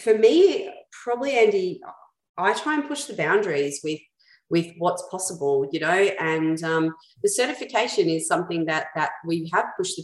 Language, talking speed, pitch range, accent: English, 165 wpm, 160-240 Hz, Australian